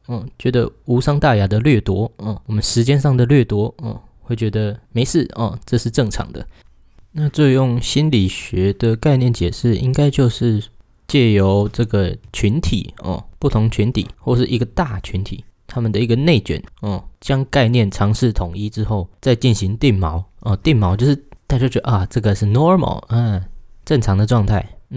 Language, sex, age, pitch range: Chinese, male, 20-39, 100-125 Hz